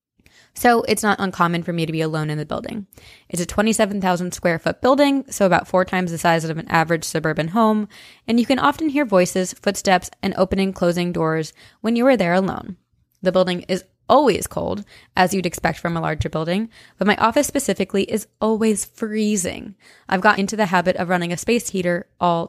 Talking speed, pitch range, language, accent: 200 wpm, 170-215 Hz, English, American